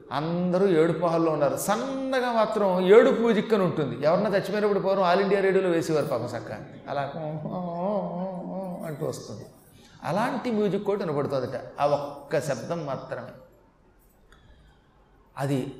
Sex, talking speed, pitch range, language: male, 115 wpm, 150-210 Hz, Telugu